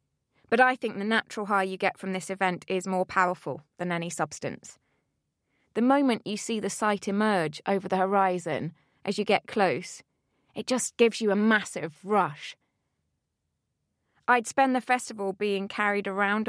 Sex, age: female, 20-39